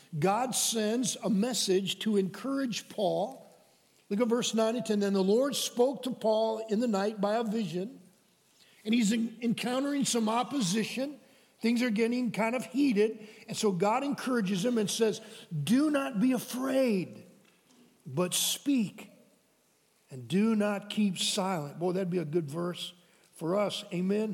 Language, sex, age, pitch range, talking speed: English, male, 50-69, 205-260 Hz, 155 wpm